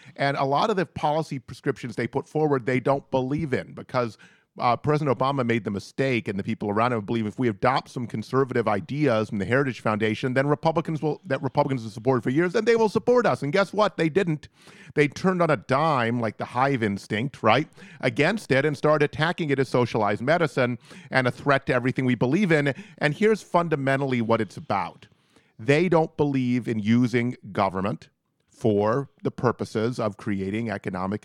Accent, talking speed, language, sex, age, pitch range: American, 195 wpm, English, male, 40-59, 115-150 Hz